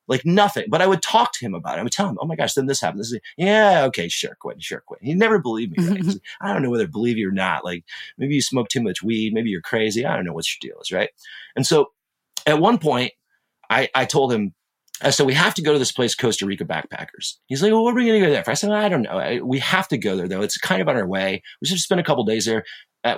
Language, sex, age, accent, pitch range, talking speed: English, male, 30-49, American, 115-185 Hz, 290 wpm